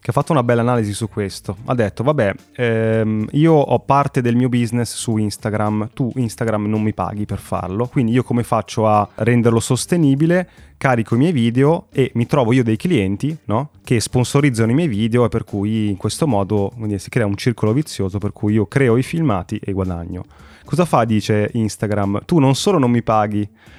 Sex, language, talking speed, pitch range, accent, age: male, Italian, 200 wpm, 110-140 Hz, native, 20-39